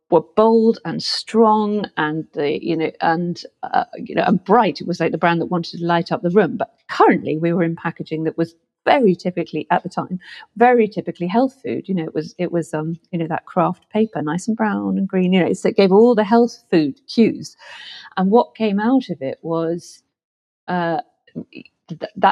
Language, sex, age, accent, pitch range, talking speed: English, female, 40-59, British, 165-205 Hz, 210 wpm